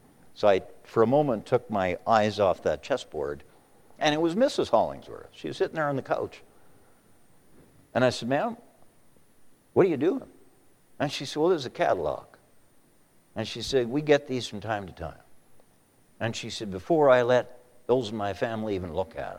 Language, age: English, 60-79